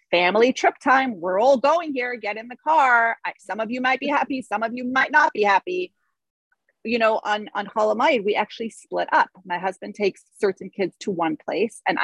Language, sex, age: English, female, 30-49